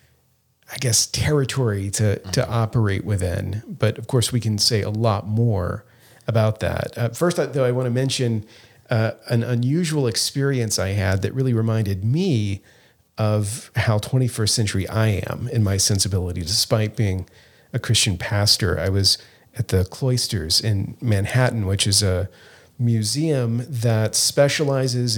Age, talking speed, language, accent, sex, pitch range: 40-59, 150 wpm, English, American, male, 105-130 Hz